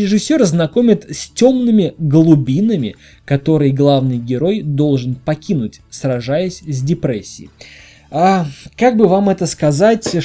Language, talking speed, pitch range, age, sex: Russian, 110 wpm, 140-190 Hz, 20-39, male